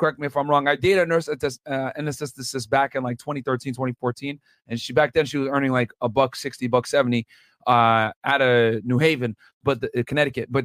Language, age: English, 30-49